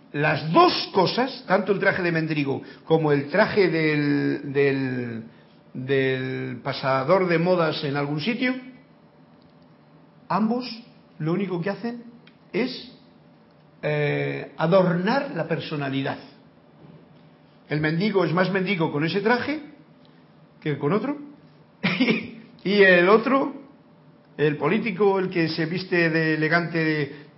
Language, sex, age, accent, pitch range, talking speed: Spanish, male, 50-69, Spanish, 150-210 Hz, 115 wpm